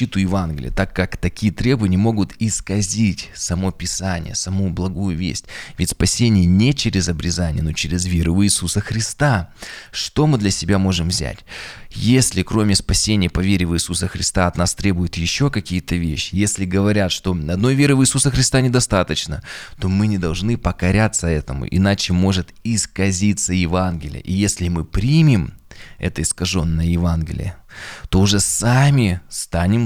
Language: Russian